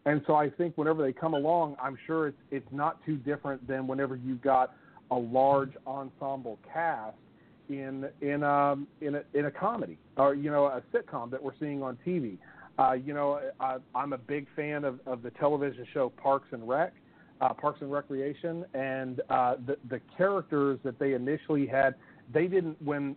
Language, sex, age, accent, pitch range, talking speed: English, male, 40-59, American, 130-150 Hz, 190 wpm